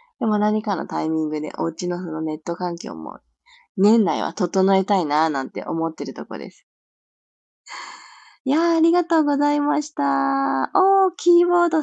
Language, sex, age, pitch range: Japanese, female, 20-39, 170-260 Hz